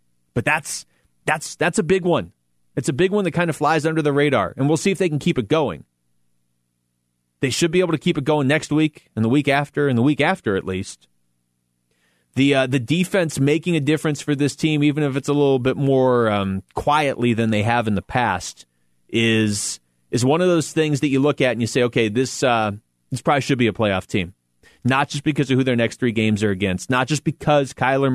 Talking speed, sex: 235 wpm, male